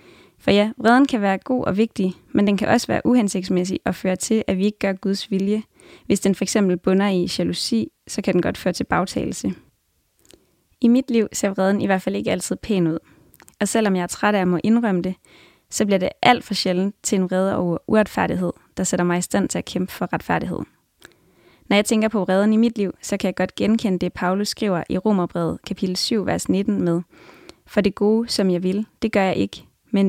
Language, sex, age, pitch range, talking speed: English, female, 20-39, 185-220 Hz, 225 wpm